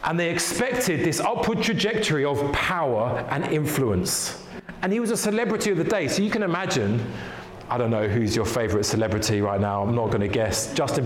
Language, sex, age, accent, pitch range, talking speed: English, male, 40-59, British, 135-185 Hz, 195 wpm